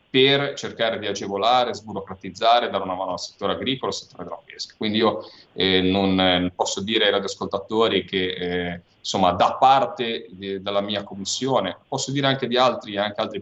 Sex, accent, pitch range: male, native, 95-115 Hz